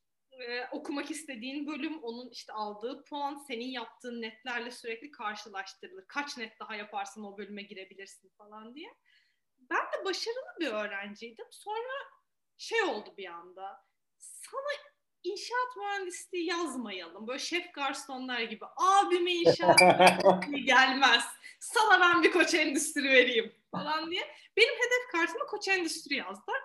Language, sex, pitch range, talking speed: Turkish, female, 235-370 Hz, 125 wpm